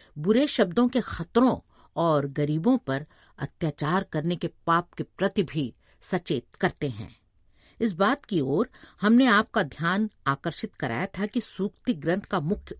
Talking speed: 150 wpm